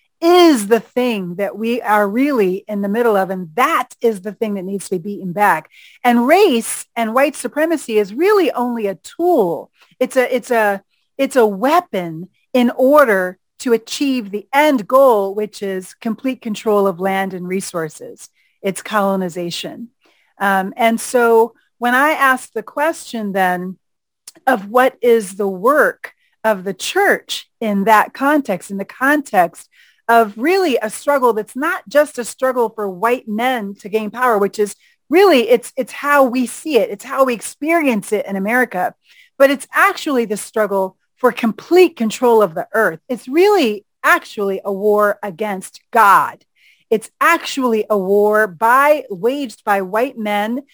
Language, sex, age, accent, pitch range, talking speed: English, female, 40-59, American, 205-270 Hz, 160 wpm